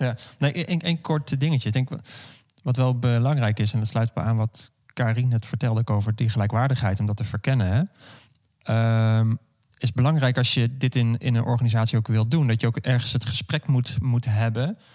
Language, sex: Dutch, male